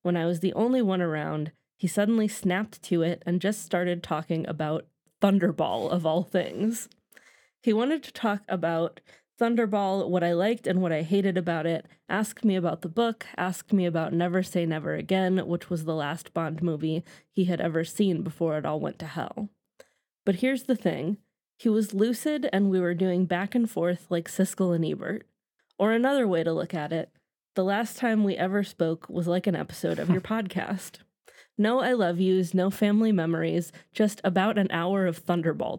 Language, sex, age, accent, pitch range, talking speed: English, female, 20-39, American, 170-205 Hz, 195 wpm